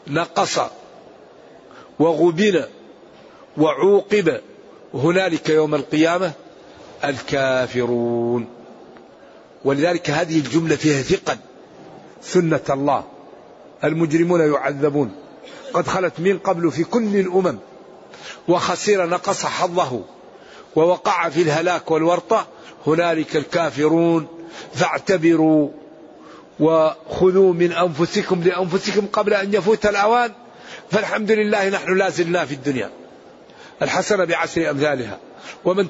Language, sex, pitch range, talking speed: Arabic, male, 150-190 Hz, 85 wpm